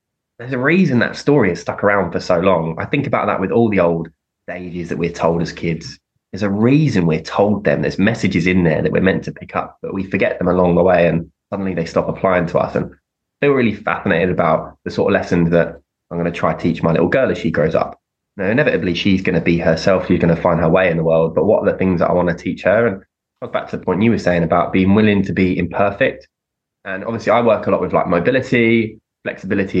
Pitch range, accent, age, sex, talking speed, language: 85-115 Hz, British, 20-39, male, 260 wpm, English